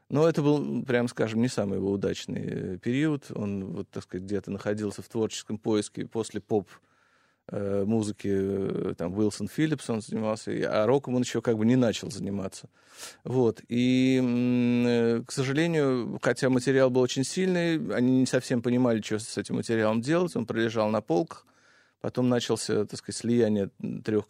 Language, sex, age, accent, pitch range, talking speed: Russian, male, 20-39, native, 110-130 Hz, 155 wpm